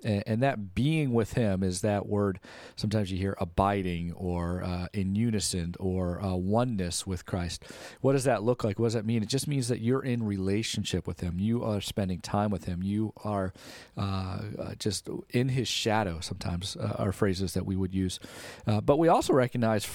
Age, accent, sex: 40-59, American, male